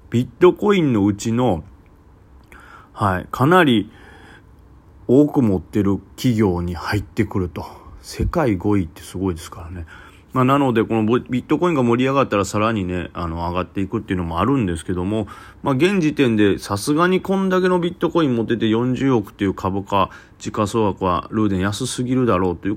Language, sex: Japanese, male